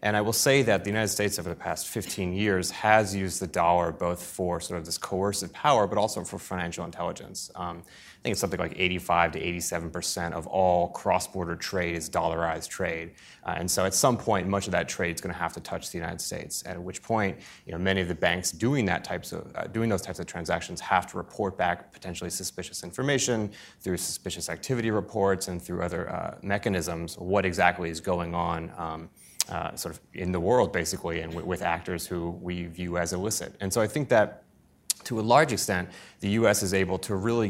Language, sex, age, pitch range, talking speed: English, male, 30-49, 85-100 Hz, 220 wpm